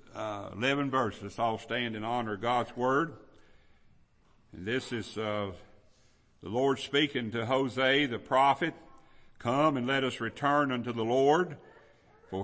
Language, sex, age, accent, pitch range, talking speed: English, male, 60-79, American, 115-150 Hz, 145 wpm